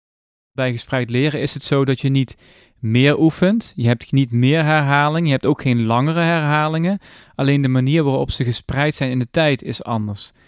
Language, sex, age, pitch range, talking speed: Dutch, male, 30-49, 125-145 Hz, 195 wpm